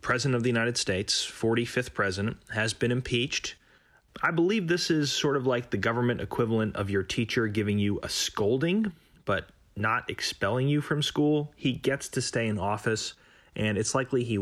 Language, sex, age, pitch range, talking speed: English, male, 30-49, 100-125 Hz, 180 wpm